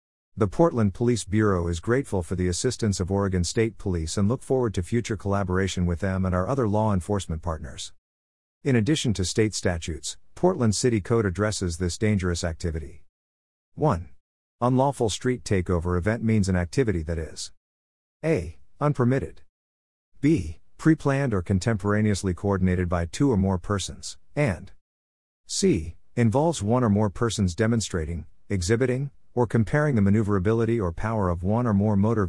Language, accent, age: English, American, 50-69